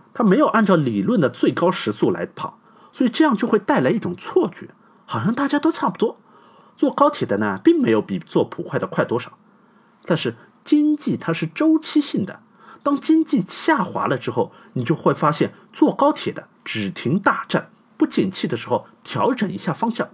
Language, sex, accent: Chinese, male, native